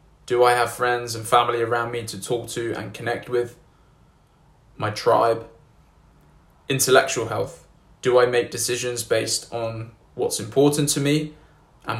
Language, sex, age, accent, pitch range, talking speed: English, male, 20-39, British, 115-130 Hz, 145 wpm